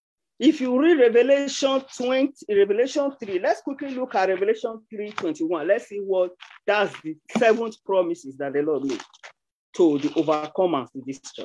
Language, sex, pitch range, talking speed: English, male, 205-285 Hz, 170 wpm